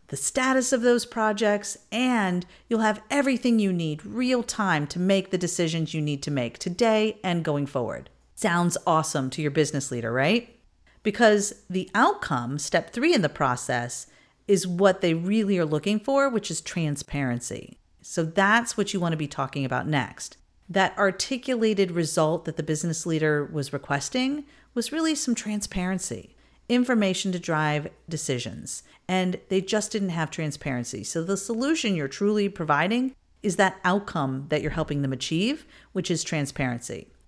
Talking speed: 160 wpm